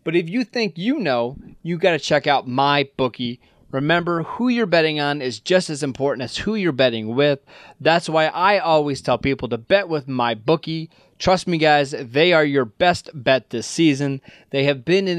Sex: male